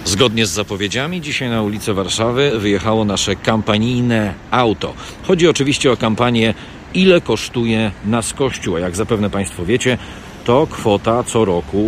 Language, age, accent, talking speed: Polish, 40-59, native, 140 wpm